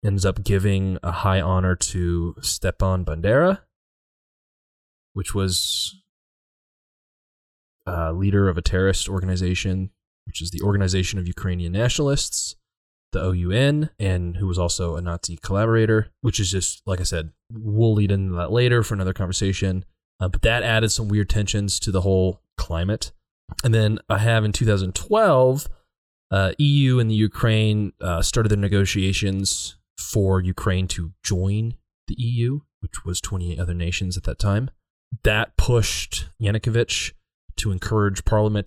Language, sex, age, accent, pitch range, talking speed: English, male, 20-39, American, 90-105 Hz, 145 wpm